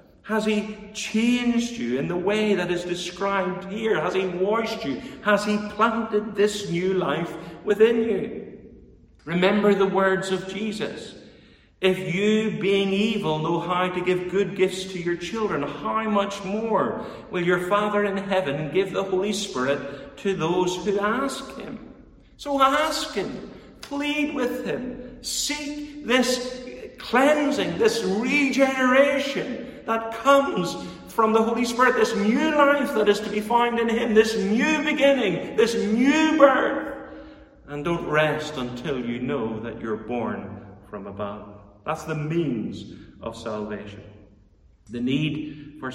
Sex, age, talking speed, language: male, 50-69, 145 wpm, English